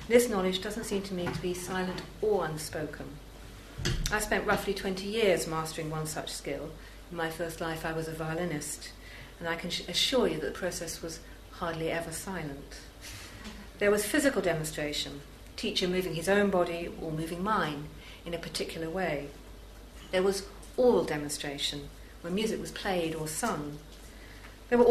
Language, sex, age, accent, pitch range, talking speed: English, female, 40-59, British, 150-205 Hz, 165 wpm